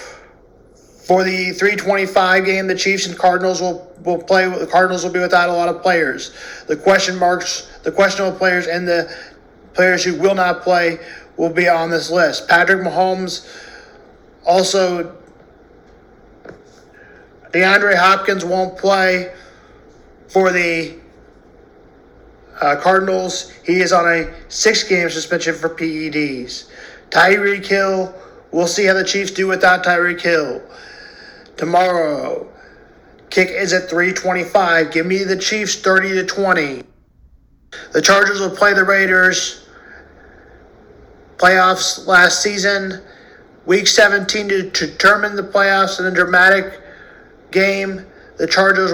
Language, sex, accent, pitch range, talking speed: English, male, American, 170-190 Hz, 125 wpm